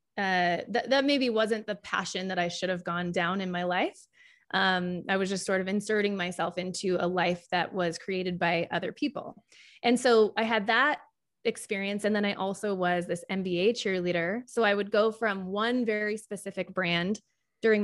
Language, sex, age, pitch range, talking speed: English, female, 20-39, 180-225 Hz, 190 wpm